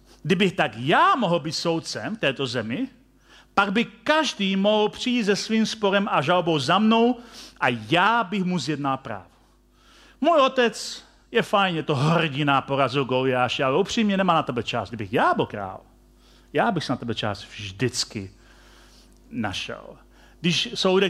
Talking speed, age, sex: 155 wpm, 40-59, male